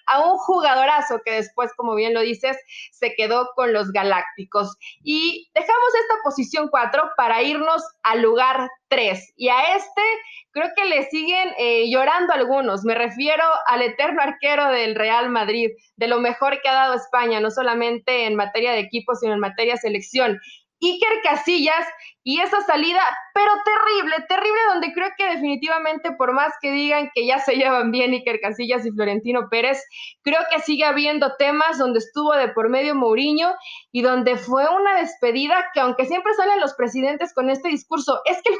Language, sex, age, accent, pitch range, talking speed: Spanish, female, 20-39, Mexican, 235-320 Hz, 175 wpm